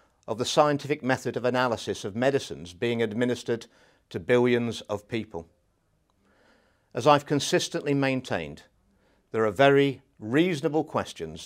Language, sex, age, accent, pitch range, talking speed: English, male, 50-69, British, 105-135 Hz, 120 wpm